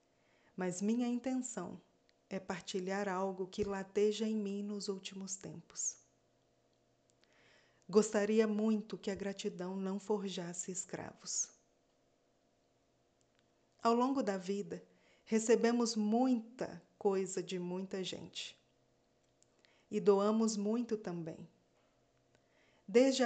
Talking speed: 95 wpm